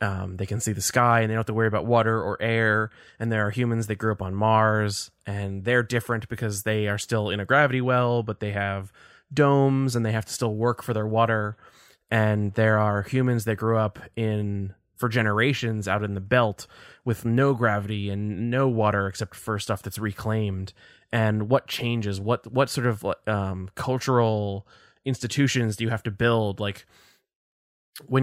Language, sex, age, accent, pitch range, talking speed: English, male, 20-39, American, 100-120 Hz, 195 wpm